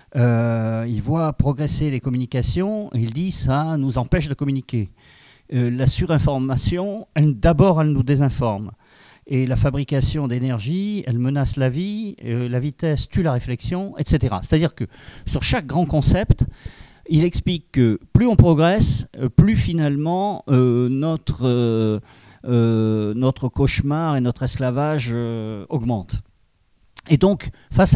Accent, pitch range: French, 115-150 Hz